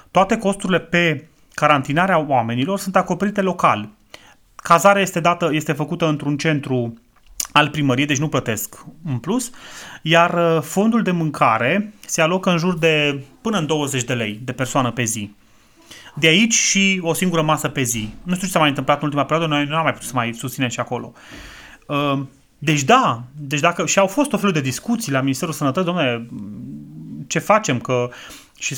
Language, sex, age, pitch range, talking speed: Romanian, male, 30-49, 135-175 Hz, 180 wpm